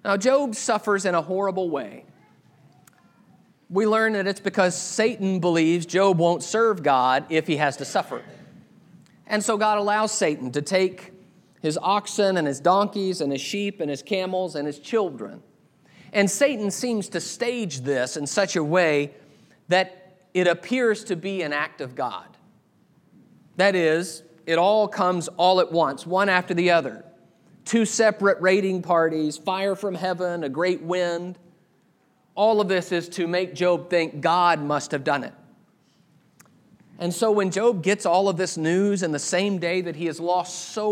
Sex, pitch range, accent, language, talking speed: male, 165-195 Hz, American, English, 170 wpm